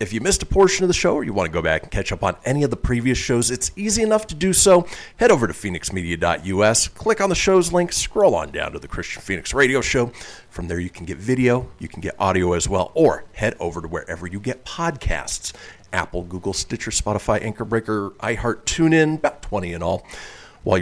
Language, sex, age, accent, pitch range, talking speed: English, male, 40-59, American, 100-160 Hz, 230 wpm